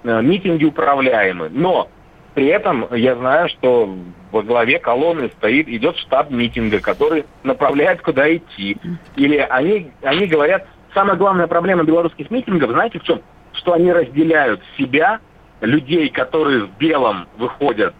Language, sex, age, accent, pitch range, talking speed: Russian, male, 50-69, native, 130-170 Hz, 135 wpm